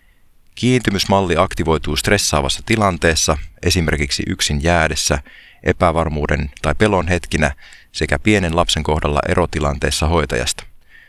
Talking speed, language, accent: 90 wpm, Finnish, native